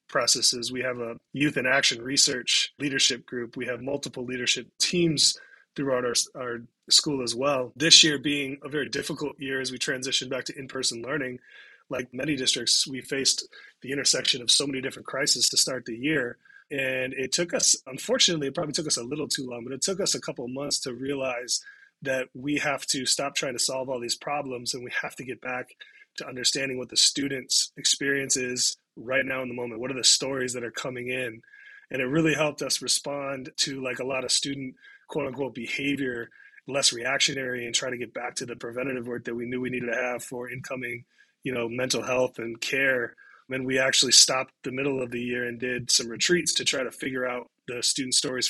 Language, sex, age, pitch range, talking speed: English, male, 20-39, 125-145 Hz, 215 wpm